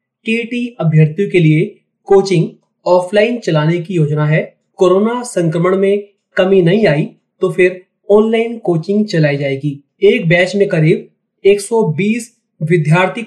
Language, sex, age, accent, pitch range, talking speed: Hindi, male, 30-49, native, 155-200 Hz, 130 wpm